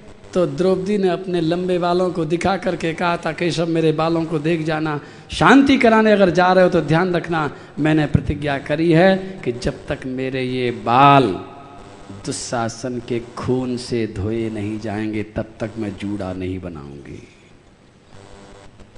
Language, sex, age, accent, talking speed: Hindi, male, 50-69, native, 155 wpm